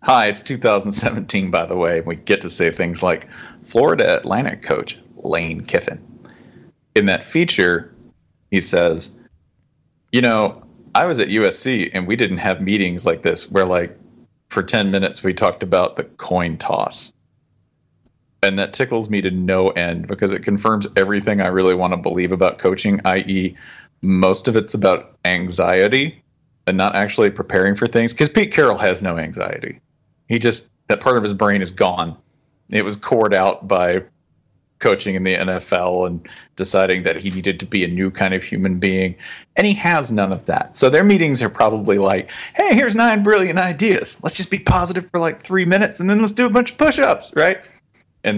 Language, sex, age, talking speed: English, male, 40-59, 185 wpm